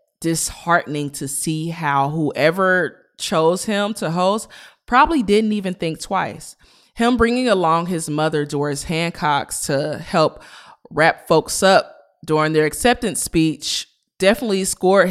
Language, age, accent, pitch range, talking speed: English, 20-39, American, 145-180 Hz, 125 wpm